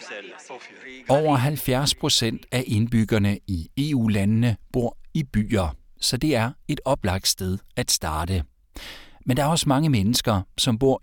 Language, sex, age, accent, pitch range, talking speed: Danish, male, 60-79, native, 95-130 Hz, 140 wpm